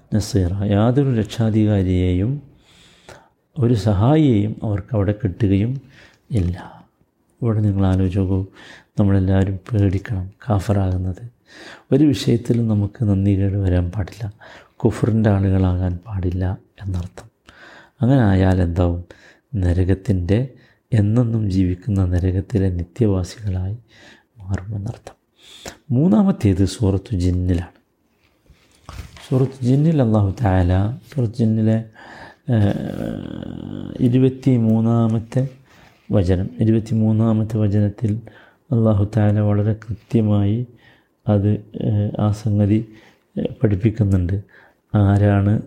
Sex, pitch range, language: male, 95-115 Hz, Malayalam